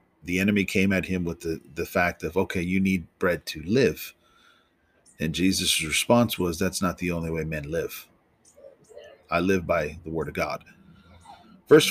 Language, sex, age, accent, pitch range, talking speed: English, male, 40-59, American, 85-100 Hz, 175 wpm